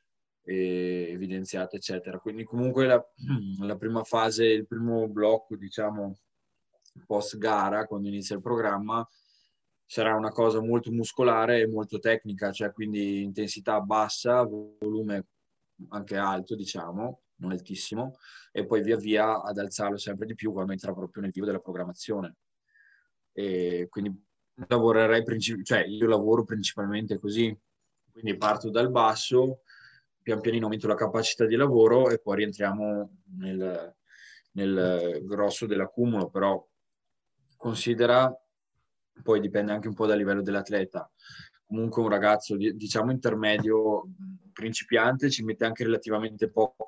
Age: 20-39